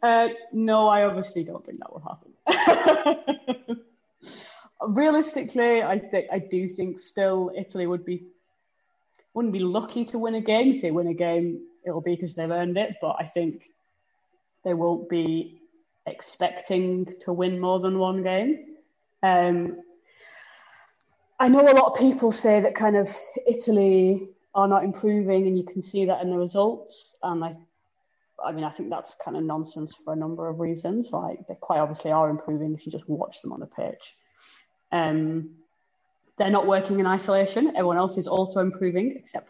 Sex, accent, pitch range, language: female, British, 170-225 Hz, English